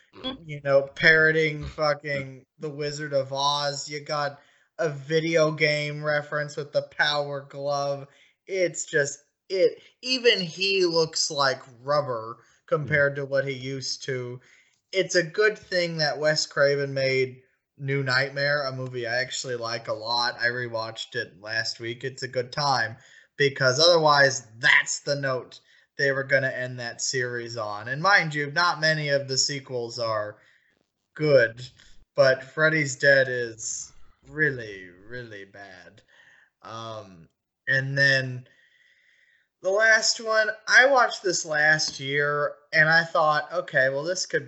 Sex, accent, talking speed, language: male, American, 145 wpm, English